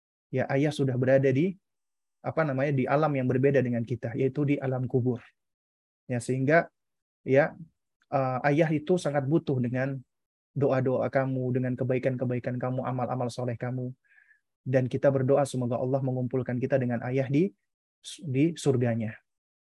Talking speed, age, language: 150 wpm, 20-39, Indonesian